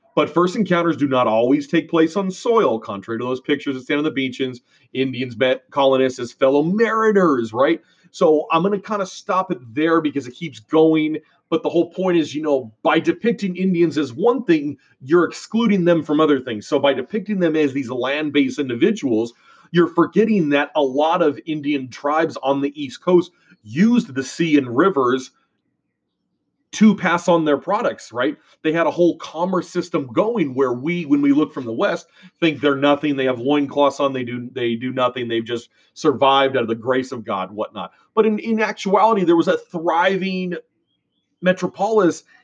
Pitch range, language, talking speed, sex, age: 135-185 Hz, English, 190 wpm, male, 30-49